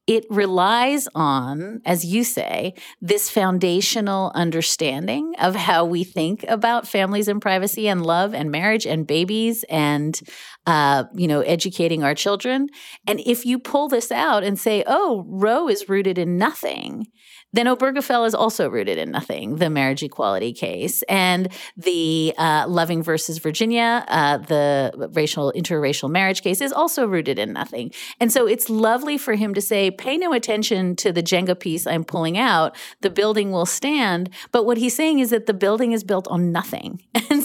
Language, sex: English, female